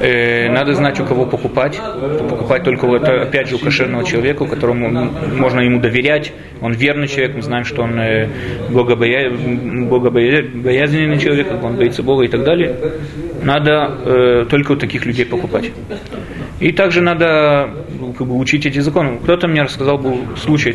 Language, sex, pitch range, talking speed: Russian, male, 120-150 Hz, 155 wpm